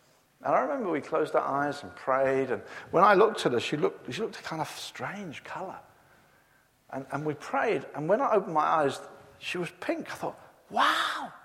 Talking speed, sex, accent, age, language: 205 wpm, male, British, 50-69, English